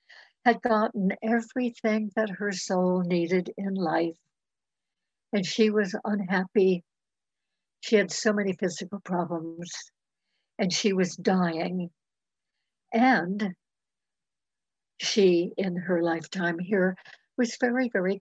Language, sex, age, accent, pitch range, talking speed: English, female, 60-79, American, 180-215 Hz, 105 wpm